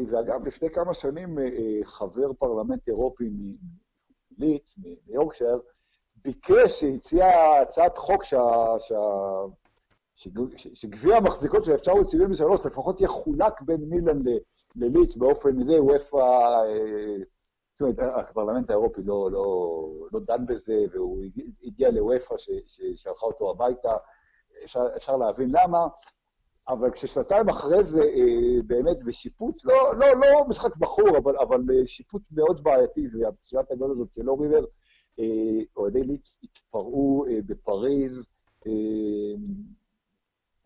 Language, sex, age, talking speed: Hebrew, male, 60-79, 100 wpm